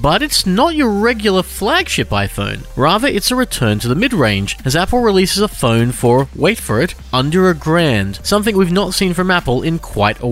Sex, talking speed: male, 205 wpm